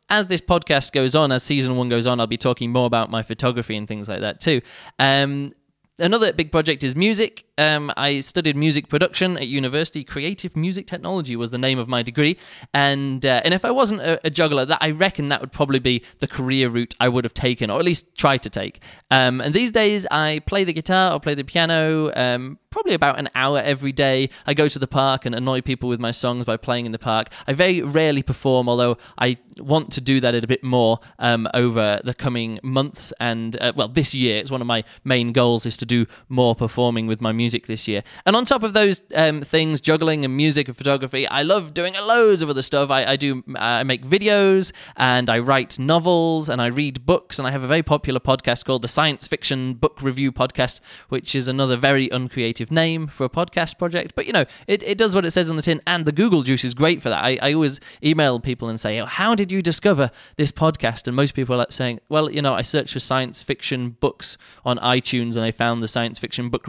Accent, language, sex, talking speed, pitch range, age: British, English, male, 235 wpm, 125-160 Hz, 20-39